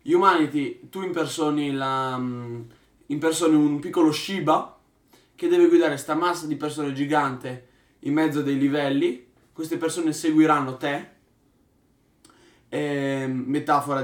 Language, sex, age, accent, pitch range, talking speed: Italian, male, 20-39, native, 130-150 Hz, 105 wpm